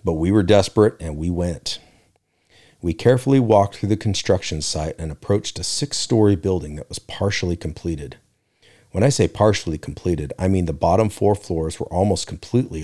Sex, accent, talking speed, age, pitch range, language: male, American, 175 wpm, 40-59, 85-105 Hz, English